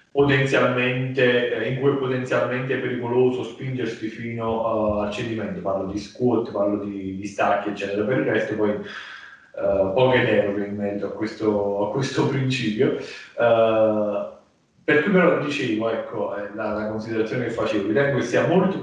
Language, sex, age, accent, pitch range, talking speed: Italian, male, 20-39, native, 105-130 Hz, 150 wpm